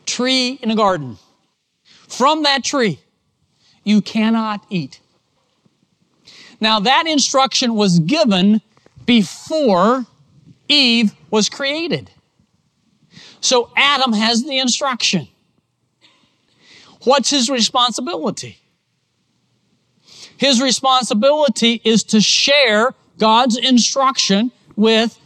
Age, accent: 40-59, American